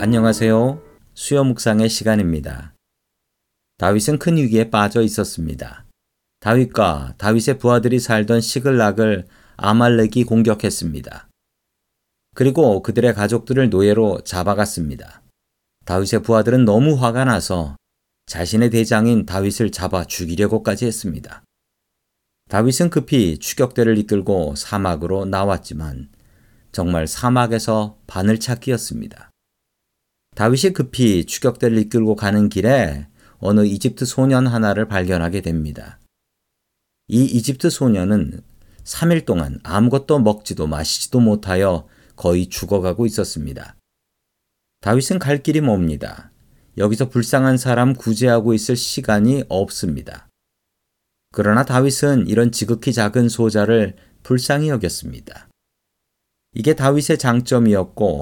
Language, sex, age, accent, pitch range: Korean, male, 40-59, native, 100-125 Hz